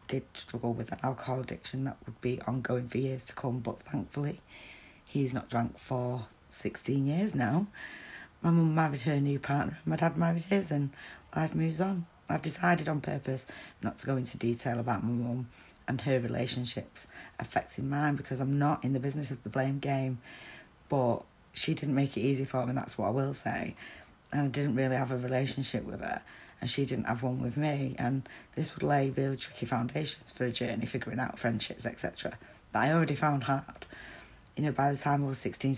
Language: English